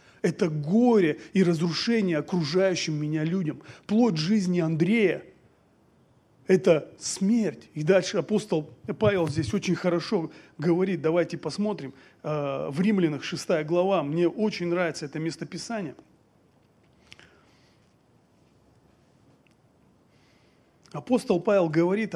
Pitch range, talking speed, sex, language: 170-215 Hz, 90 wpm, male, Russian